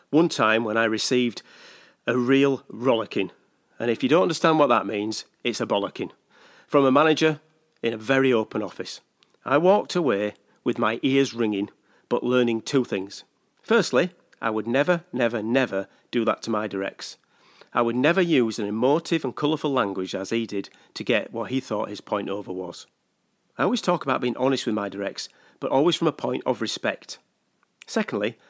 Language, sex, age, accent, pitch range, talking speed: English, male, 40-59, British, 110-145 Hz, 185 wpm